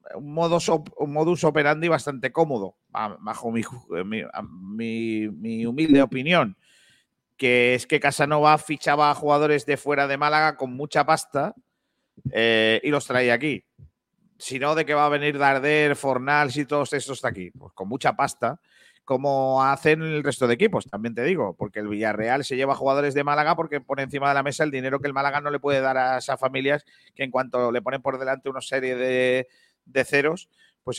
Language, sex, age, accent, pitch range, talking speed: Spanish, male, 40-59, Spanish, 130-155 Hz, 190 wpm